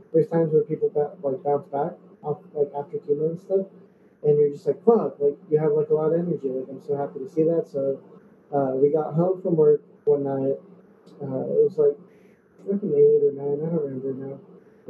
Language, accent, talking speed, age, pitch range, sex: English, American, 225 wpm, 20-39, 145-215 Hz, male